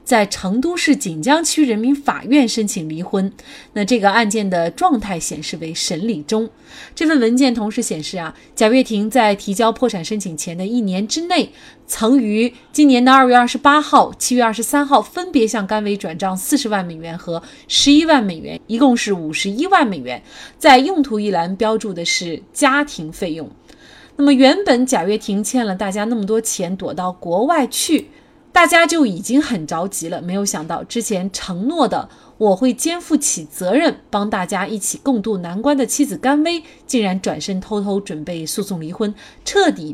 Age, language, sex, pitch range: 30-49, Chinese, female, 190-275 Hz